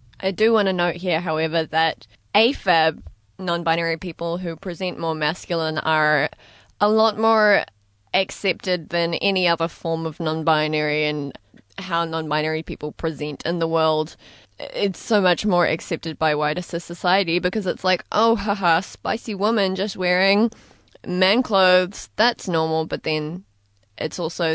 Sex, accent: female, Australian